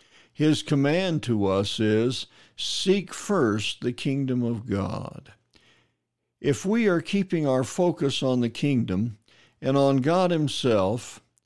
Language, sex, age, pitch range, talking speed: English, male, 60-79, 115-160 Hz, 125 wpm